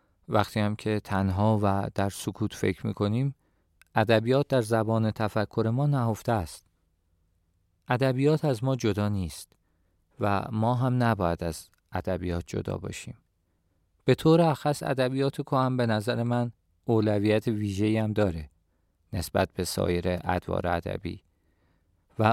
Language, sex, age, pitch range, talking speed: Persian, male, 40-59, 90-120 Hz, 130 wpm